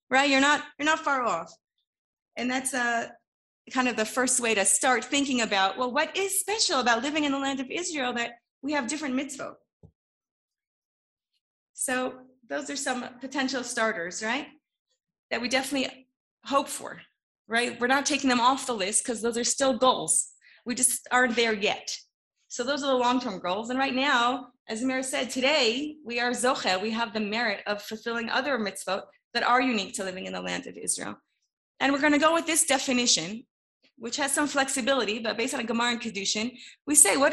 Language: English